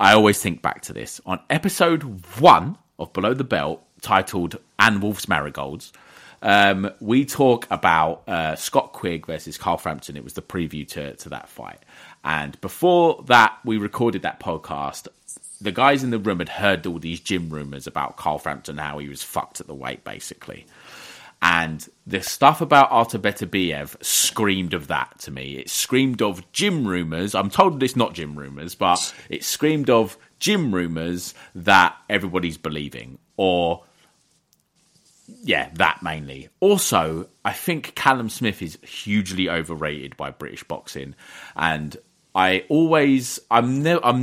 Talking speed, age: 155 wpm, 30-49